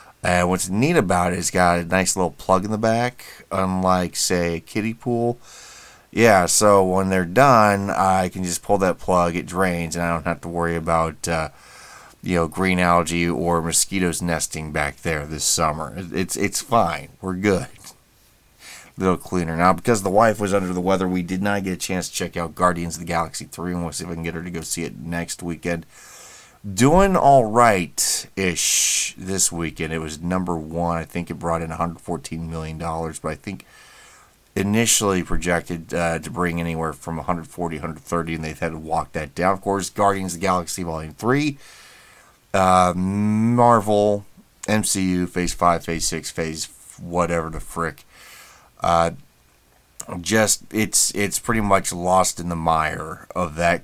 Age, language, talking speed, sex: 30-49, English, 180 wpm, male